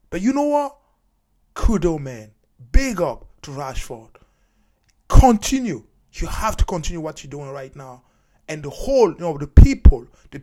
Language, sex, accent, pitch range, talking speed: English, male, Nigerian, 145-245 Hz, 160 wpm